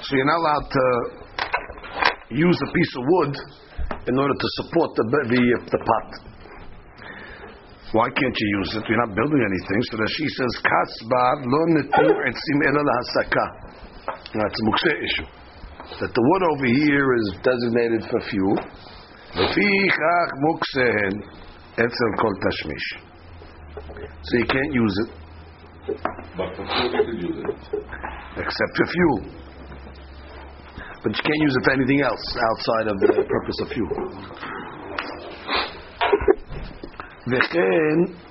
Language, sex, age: English, male, 60-79